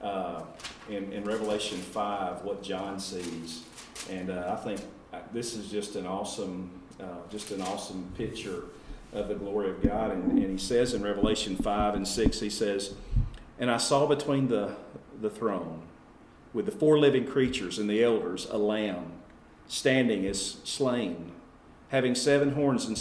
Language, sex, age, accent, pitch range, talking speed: English, male, 40-59, American, 105-145 Hz, 160 wpm